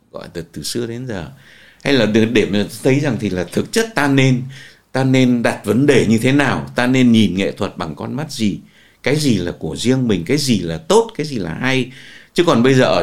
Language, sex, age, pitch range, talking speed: Vietnamese, male, 60-79, 110-150 Hz, 250 wpm